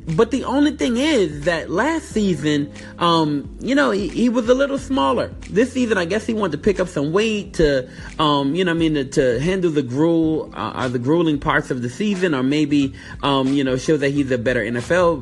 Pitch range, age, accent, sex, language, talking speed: 140-195 Hz, 30-49, American, male, English, 225 wpm